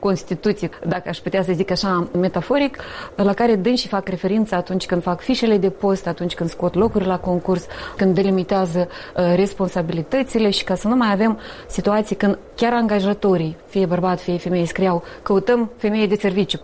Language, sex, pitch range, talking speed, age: Romanian, female, 180-220 Hz, 175 wpm, 30-49